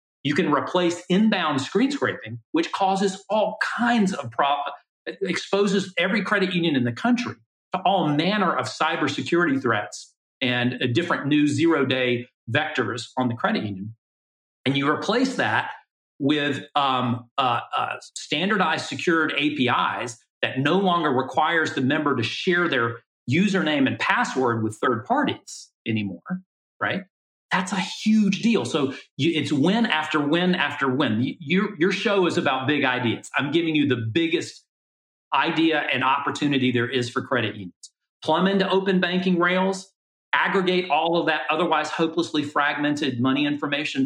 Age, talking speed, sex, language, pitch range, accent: 40-59, 150 wpm, male, English, 125-180 Hz, American